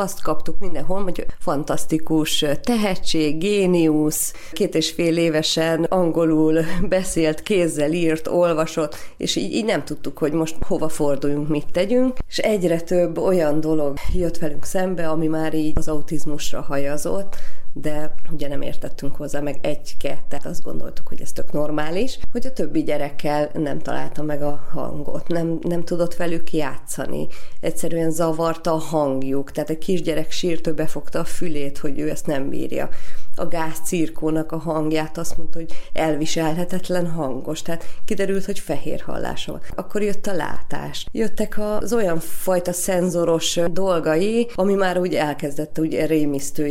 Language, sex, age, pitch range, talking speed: Hungarian, female, 30-49, 150-180 Hz, 150 wpm